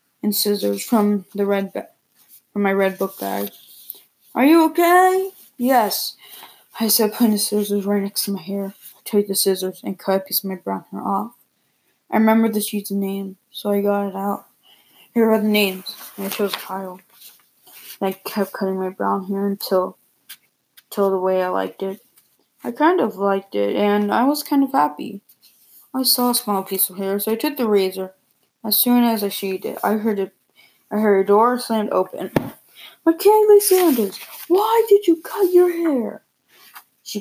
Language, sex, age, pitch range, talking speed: English, female, 20-39, 195-245 Hz, 185 wpm